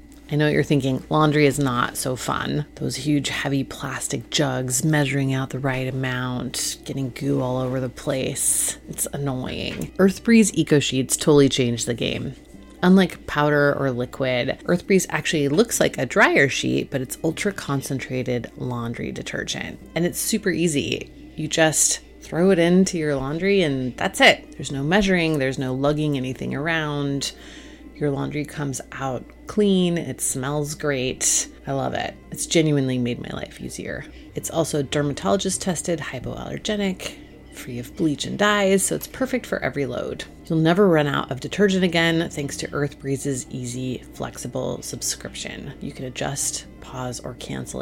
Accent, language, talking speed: American, English, 160 wpm